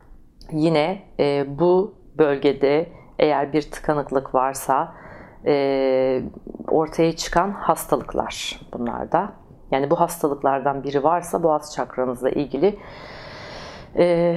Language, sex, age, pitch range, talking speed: Turkish, female, 40-59, 140-180 Hz, 95 wpm